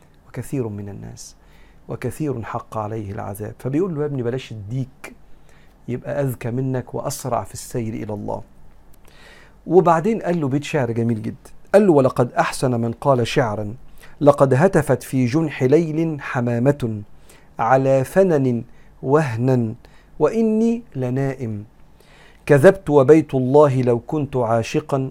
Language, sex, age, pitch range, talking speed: Arabic, male, 50-69, 115-150 Hz, 125 wpm